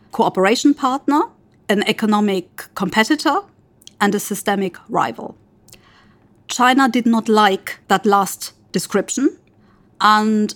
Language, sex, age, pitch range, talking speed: English, female, 50-69, 195-230 Hz, 95 wpm